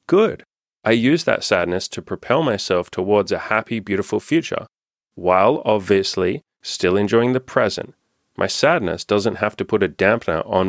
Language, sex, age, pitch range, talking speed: English, male, 30-49, 100-115 Hz, 155 wpm